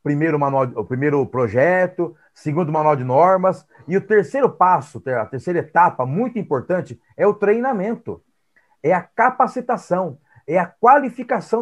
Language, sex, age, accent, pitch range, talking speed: Portuguese, male, 40-59, Brazilian, 145-210 Hz, 140 wpm